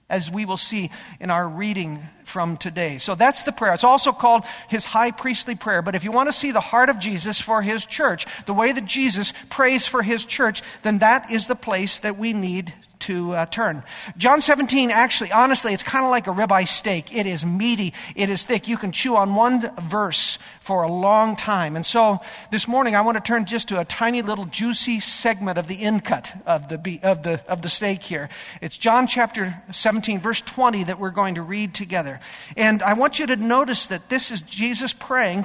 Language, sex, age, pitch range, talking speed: English, male, 50-69, 195-245 Hz, 220 wpm